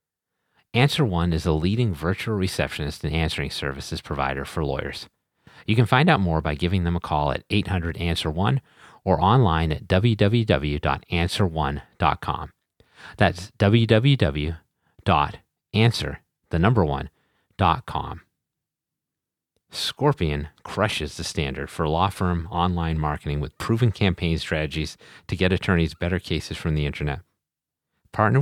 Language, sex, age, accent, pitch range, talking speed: English, male, 40-59, American, 80-105 Hz, 120 wpm